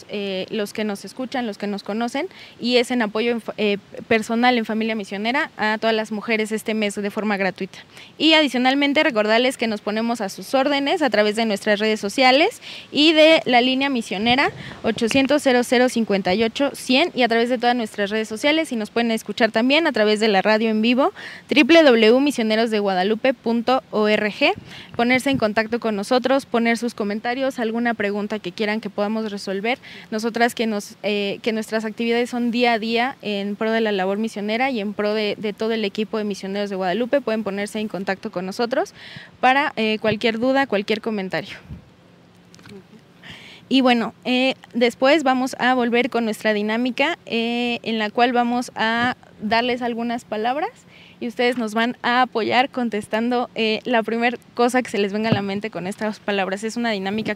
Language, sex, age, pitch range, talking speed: Spanish, female, 20-39, 210-245 Hz, 175 wpm